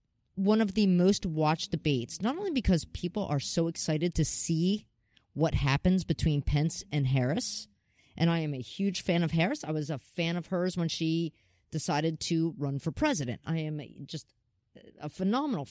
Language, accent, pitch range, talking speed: English, American, 135-185 Hz, 180 wpm